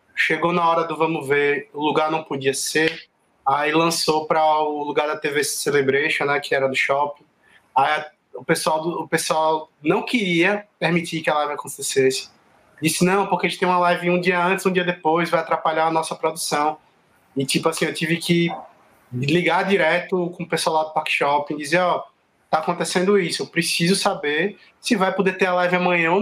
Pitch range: 160-190 Hz